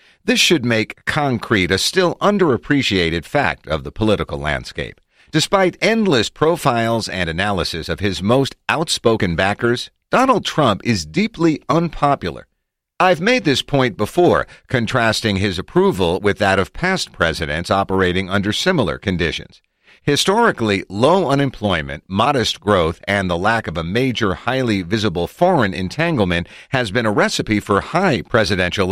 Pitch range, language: 95-140 Hz, English